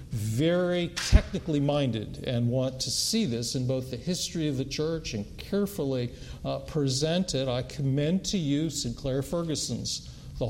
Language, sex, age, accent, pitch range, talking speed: English, male, 50-69, American, 120-160 Hz, 150 wpm